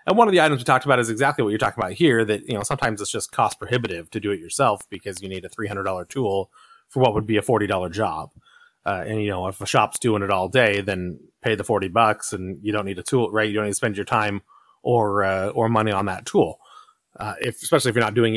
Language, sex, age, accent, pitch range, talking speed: English, male, 30-49, American, 105-135 Hz, 275 wpm